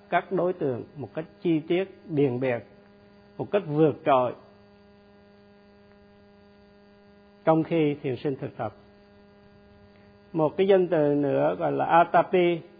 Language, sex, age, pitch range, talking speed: Vietnamese, male, 50-69, 130-205 Hz, 125 wpm